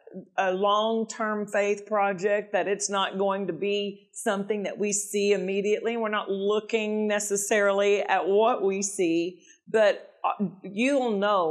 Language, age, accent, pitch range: English, 50-69, American, 185-220 Hz